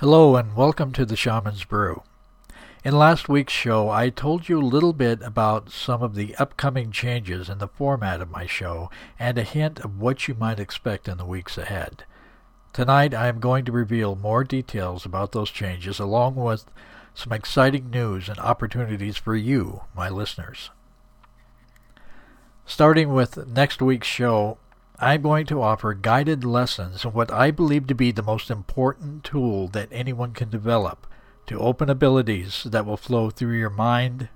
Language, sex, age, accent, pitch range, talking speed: English, male, 60-79, American, 105-130 Hz, 170 wpm